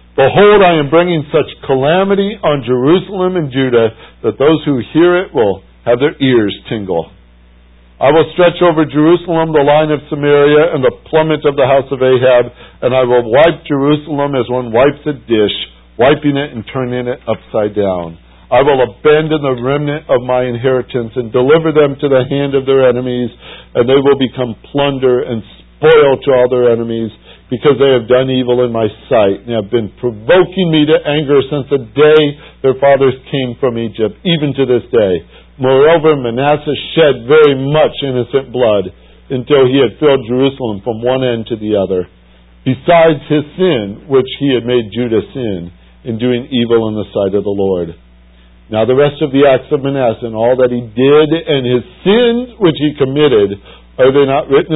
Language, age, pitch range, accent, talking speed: English, 60-79, 115-150 Hz, American, 185 wpm